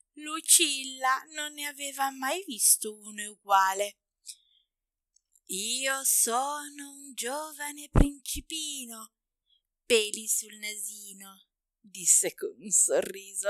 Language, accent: Italian, native